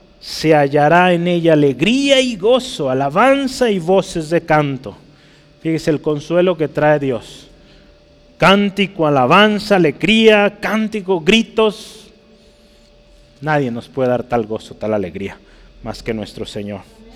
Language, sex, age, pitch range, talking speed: Spanish, male, 30-49, 135-200 Hz, 120 wpm